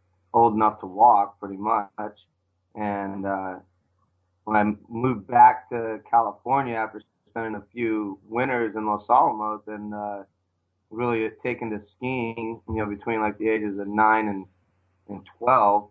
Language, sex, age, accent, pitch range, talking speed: English, male, 30-49, American, 100-115 Hz, 145 wpm